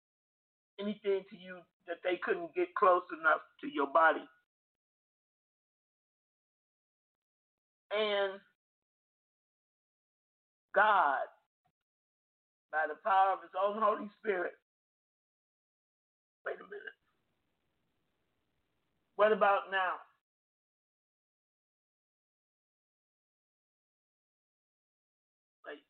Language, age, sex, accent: English, 50-69, male, American